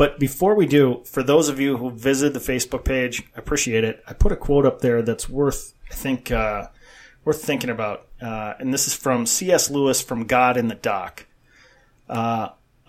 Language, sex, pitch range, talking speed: English, male, 125-150 Hz, 200 wpm